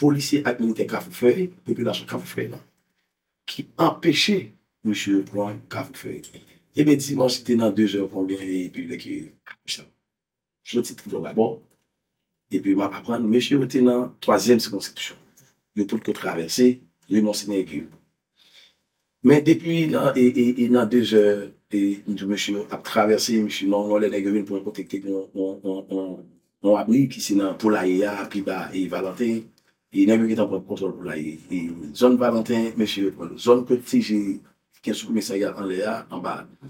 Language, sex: French, male